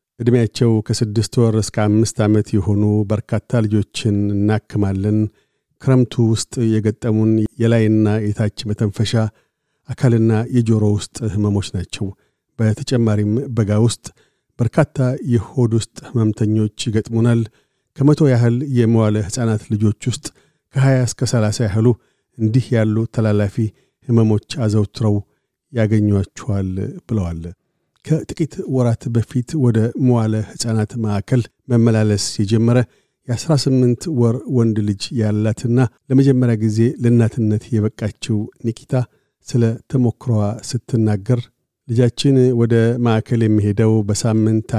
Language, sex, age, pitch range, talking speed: Amharic, male, 50-69, 110-125 Hz, 95 wpm